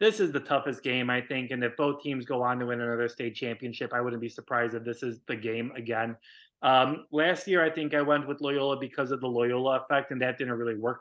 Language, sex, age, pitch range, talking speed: English, male, 20-39, 120-145 Hz, 255 wpm